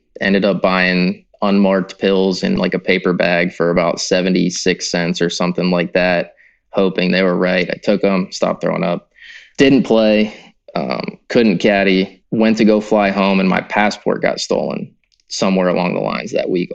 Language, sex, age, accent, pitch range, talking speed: English, male, 20-39, American, 95-105 Hz, 175 wpm